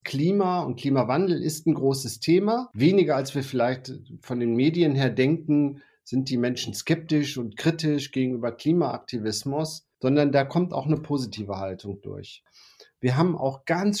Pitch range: 135-170 Hz